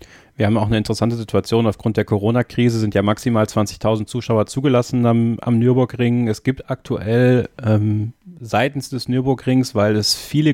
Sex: male